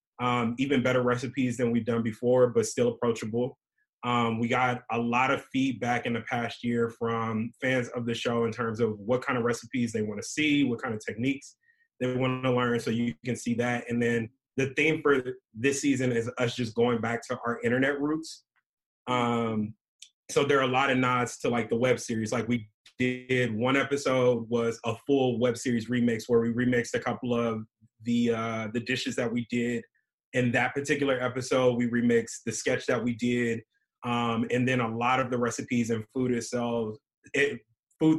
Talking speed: 200 wpm